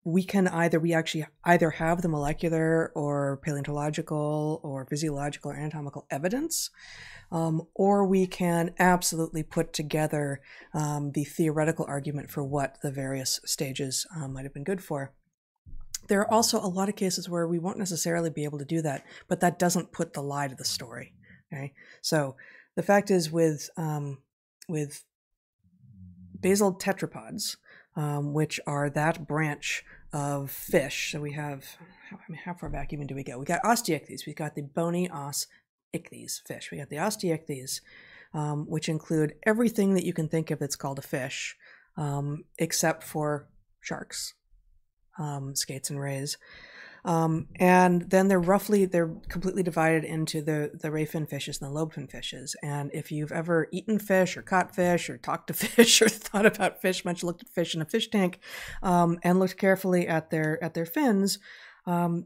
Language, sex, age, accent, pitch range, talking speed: English, female, 20-39, American, 145-180 Hz, 175 wpm